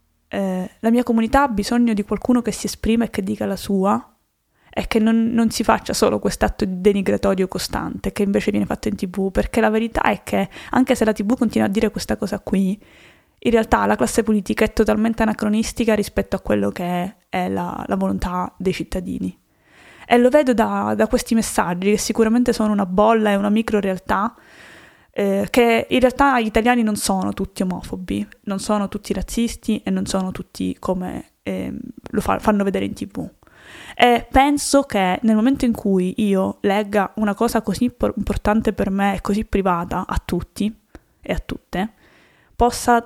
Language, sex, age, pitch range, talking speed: Italian, female, 20-39, 195-230 Hz, 185 wpm